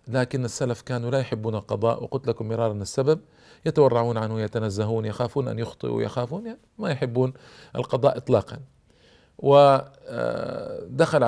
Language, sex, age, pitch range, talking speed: Arabic, male, 40-59, 110-140 Hz, 130 wpm